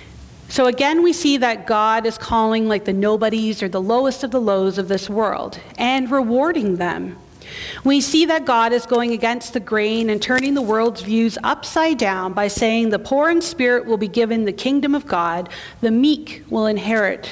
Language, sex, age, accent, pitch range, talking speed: English, female, 40-59, American, 205-265 Hz, 195 wpm